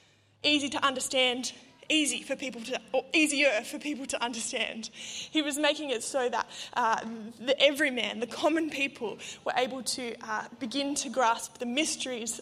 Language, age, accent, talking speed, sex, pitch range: English, 20-39, Australian, 165 wpm, female, 235-275 Hz